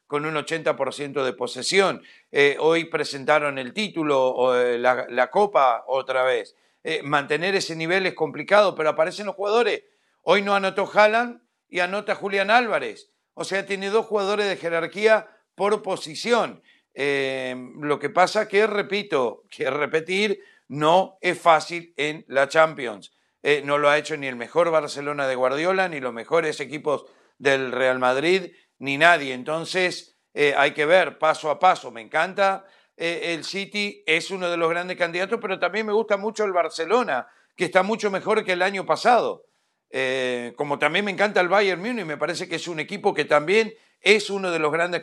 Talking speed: 175 wpm